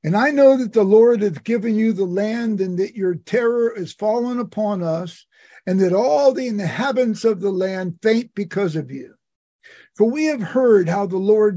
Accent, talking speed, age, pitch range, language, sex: American, 195 wpm, 50-69, 180-230 Hz, English, male